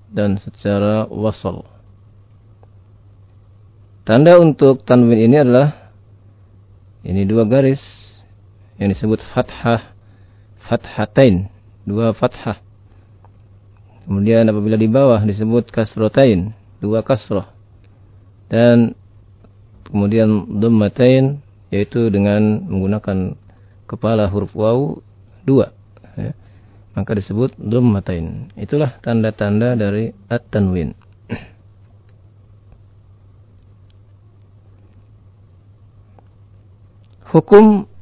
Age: 40-59